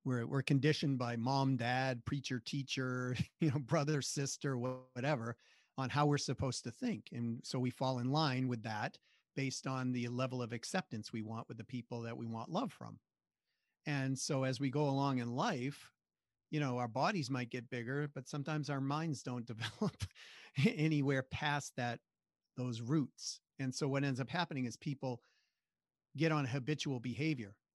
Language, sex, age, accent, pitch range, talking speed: English, male, 40-59, American, 120-145 Hz, 175 wpm